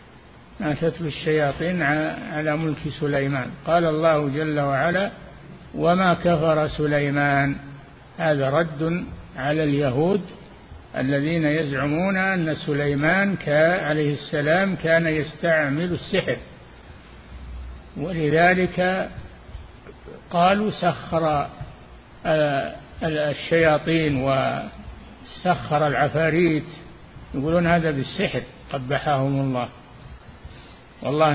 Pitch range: 140-165 Hz